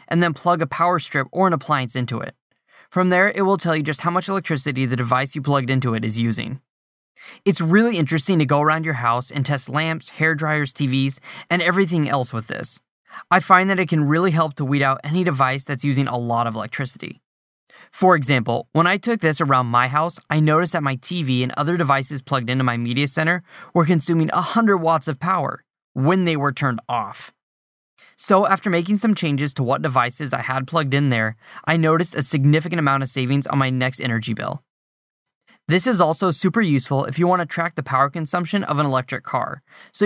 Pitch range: 130-170 Hz